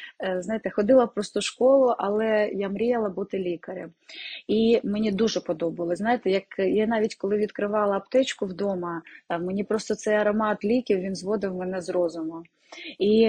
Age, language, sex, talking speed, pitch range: 20-39, Ukrainian, female, 150 wpm, 180-210 Hz